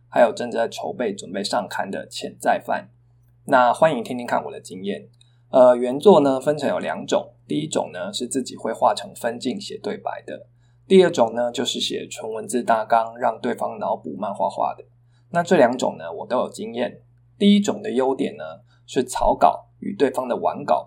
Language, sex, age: Chinese, male, 20-39